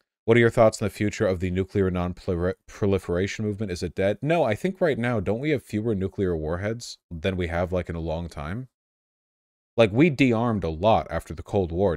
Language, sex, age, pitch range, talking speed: English, male, 30-49, 90-110 Hz, 215 wpm